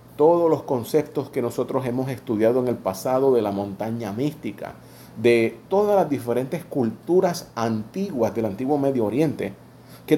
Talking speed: 145 wpm